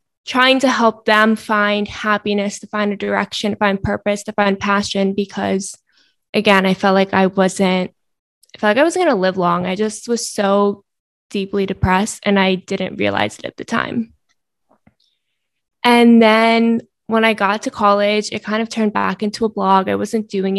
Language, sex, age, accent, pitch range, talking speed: English, female, 20-39, American, 195-230 Hz, 185 wpm